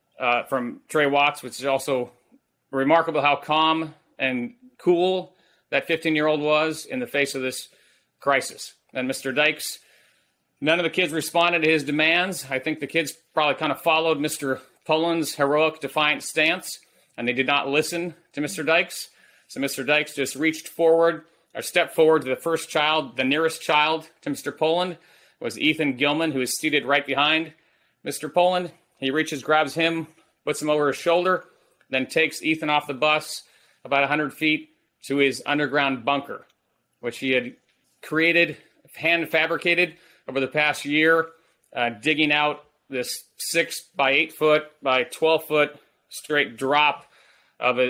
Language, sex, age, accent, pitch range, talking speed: English, male, 30-49, American, 135-160 Hz, 150 wpm